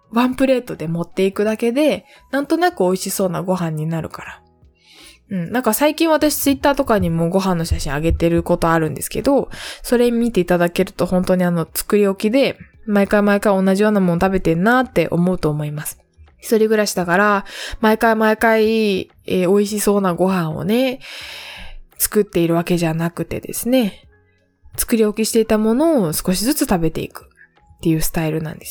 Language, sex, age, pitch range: Japanese, female, 20-39, 165-215 Hz